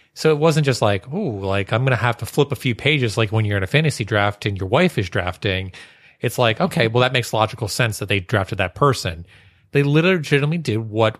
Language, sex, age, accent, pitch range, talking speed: English, male, 30-49, American, 110-140 Hz, 240 wpm